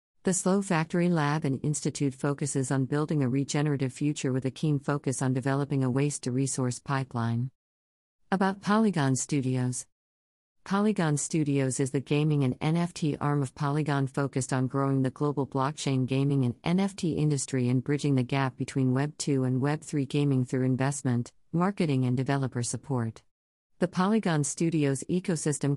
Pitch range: 130-160 Hz